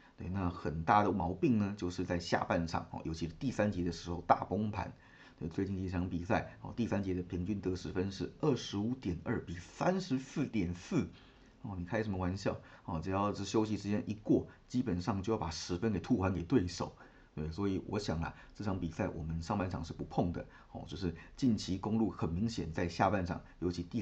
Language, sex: Chinese, male